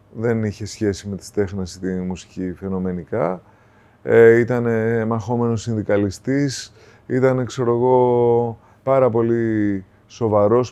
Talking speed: 110 wpm